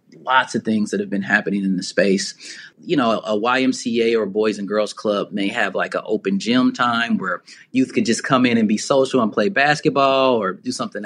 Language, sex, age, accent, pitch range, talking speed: English, male, 30-49, American, 115-160 Hz, 220 wpm